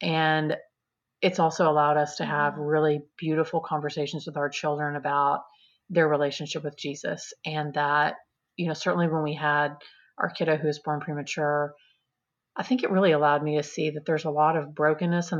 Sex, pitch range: female, 150-160 Hz